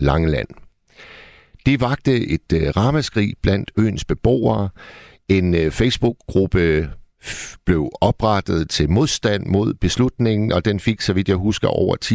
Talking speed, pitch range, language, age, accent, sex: 135 wpm, 85-125 Hz, Danish, 60-79, native, male